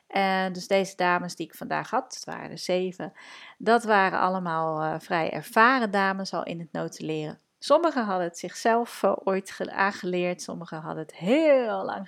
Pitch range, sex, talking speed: 165-205 Hz, female, 160 wpm